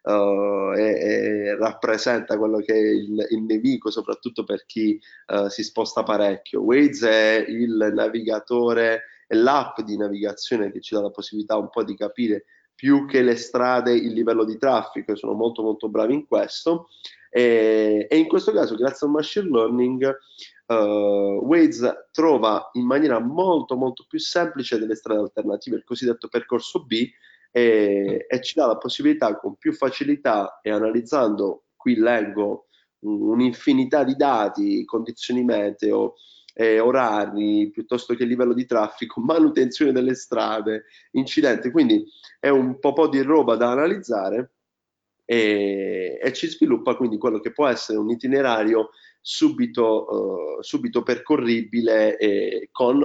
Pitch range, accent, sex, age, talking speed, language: 110-155 Hz, native, male, 20-39, 145 wpm, Italian